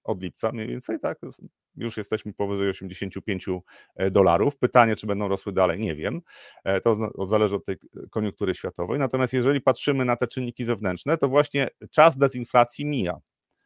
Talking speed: 155 wpm